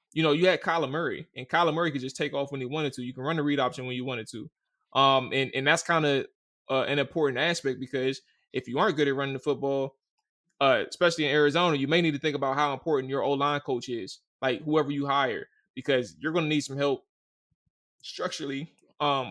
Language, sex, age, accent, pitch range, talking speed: English, male, 20-39, American, 135-160 Hz, 235 wpm